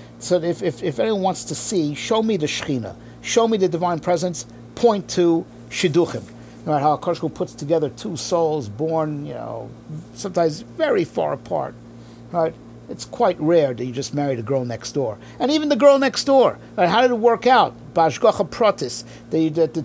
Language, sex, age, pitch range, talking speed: English, male, 50-69, 130-180 Hz, 185 wpm